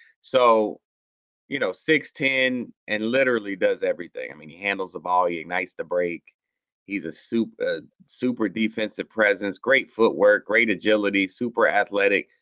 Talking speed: 150 wpm